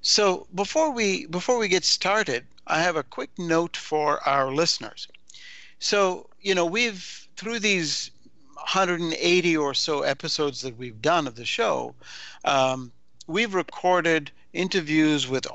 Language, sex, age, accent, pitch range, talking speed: English, male, 60-79, American, 135-185 Hz, 140 wpm